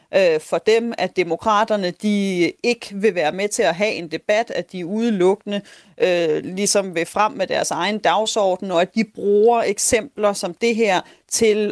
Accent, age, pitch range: native, 30-49, 185-225 Hz